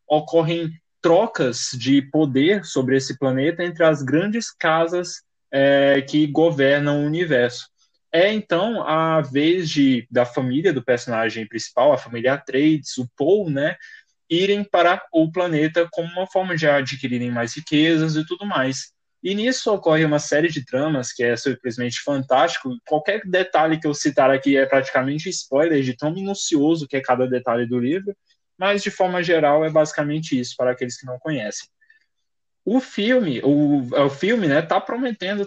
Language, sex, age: Portuguese, male, 10-29